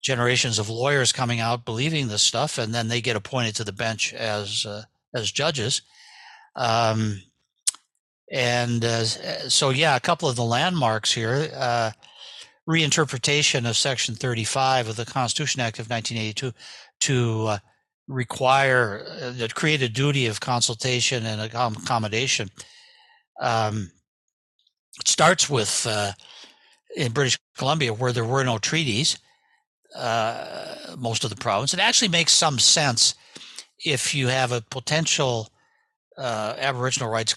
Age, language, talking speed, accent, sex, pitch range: 60-79, English, 135 wpm, American, male, 115-145 Hz